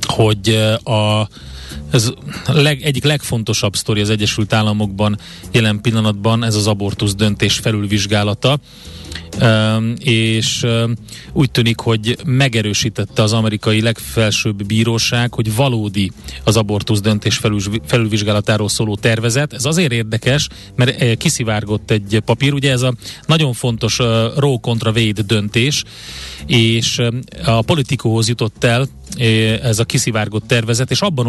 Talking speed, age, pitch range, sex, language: 125 wpm, 30-49, 110-130 Hz, male, Hungarian